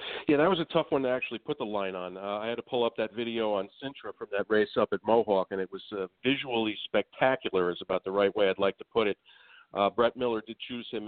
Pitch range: 105-135 Hz